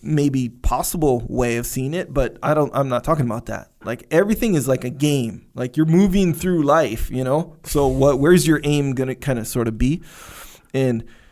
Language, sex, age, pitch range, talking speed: English, male, 20-39, 120-150 Hz, 210 wpm